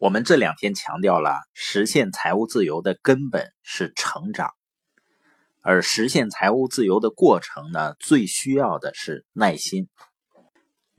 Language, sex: Chinese, male